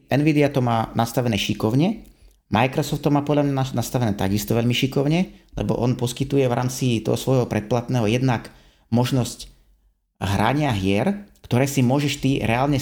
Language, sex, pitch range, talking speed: Slovak, male, 105-140 Hz, 145 wpm